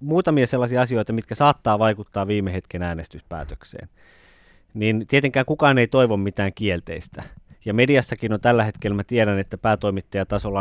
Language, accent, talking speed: Finnish, native, 140 wpm